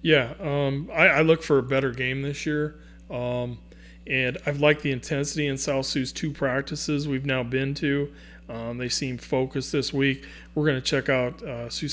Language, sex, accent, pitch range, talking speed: English, male, American, 120-140 Hz, 195 wpm